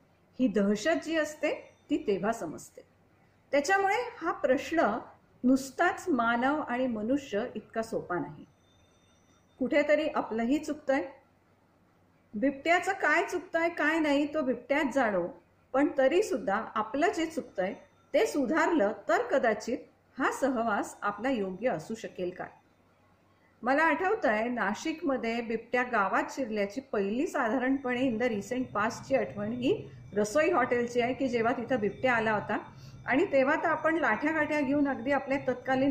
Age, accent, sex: 40-59, native, female